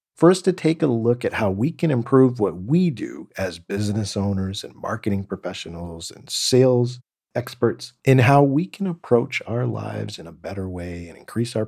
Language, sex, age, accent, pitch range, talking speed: English, male, 50-69, American, 105-145 Hz, 185 wpm